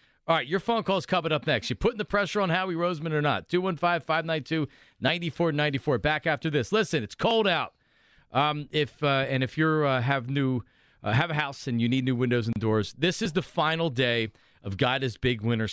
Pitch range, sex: 125-160 Hz, male